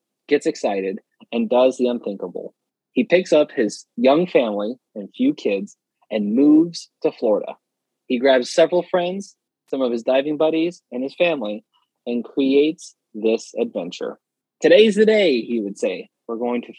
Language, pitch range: English, 115-175 Hz